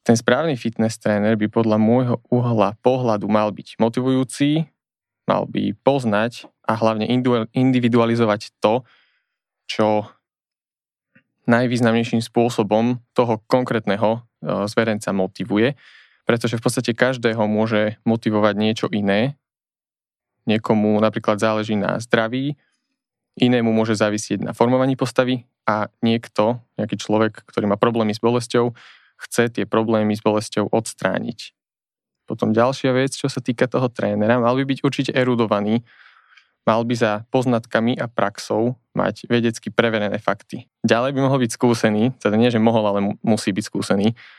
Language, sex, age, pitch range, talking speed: Slovak, male, 20-39, 110-120 Hz, 130 wpm